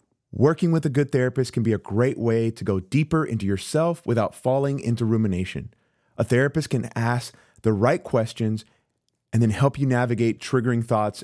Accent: American